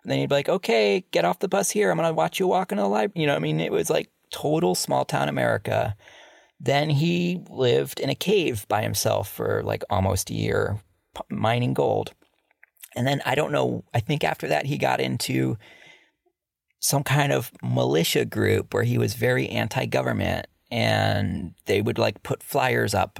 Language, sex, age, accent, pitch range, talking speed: English, male, 30-49, American, 100-150 Hz, 195 wpm